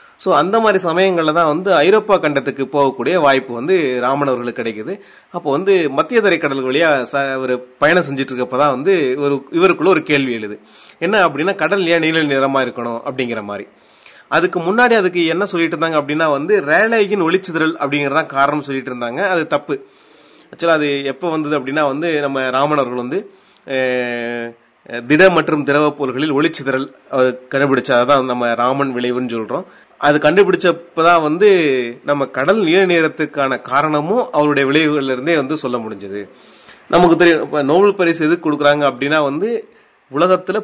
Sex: male